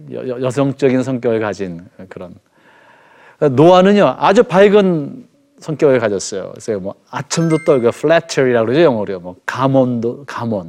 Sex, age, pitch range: male, 40-59, 130-180 Hz